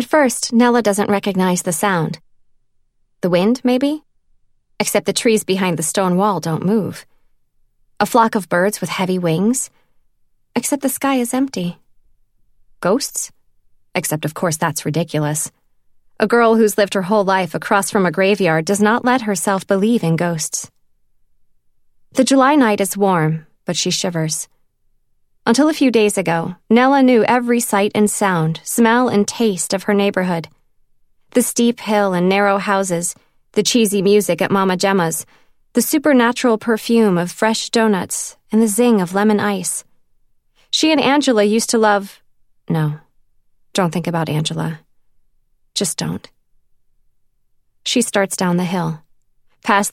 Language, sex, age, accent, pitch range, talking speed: English, female, 20-39, American, 170-225 Hz, 150 wpm